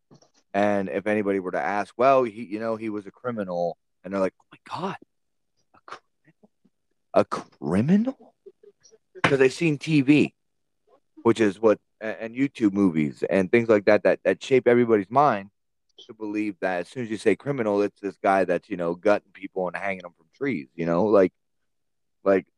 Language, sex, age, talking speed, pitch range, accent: English, male, 30-49, 185 wpm, 90-125 Hz, American